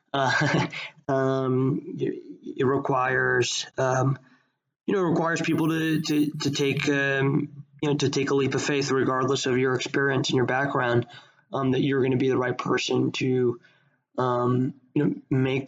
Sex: male